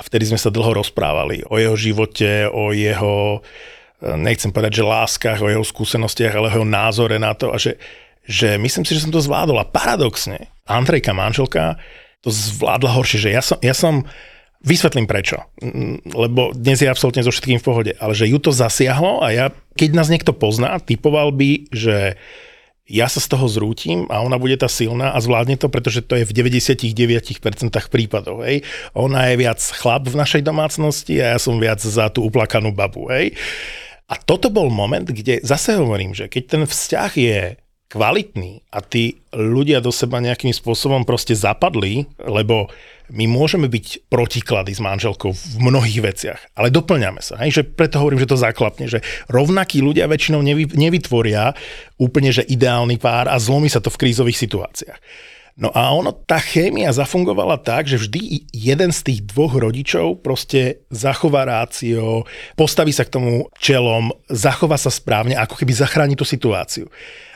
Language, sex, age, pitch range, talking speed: Czech, male, 40-59, 110-140 Hz, 170 wpm